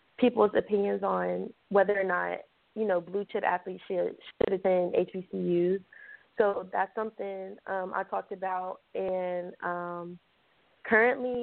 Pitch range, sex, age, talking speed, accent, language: 175-200 Hz, female, 20-39, 135 wpm, American, English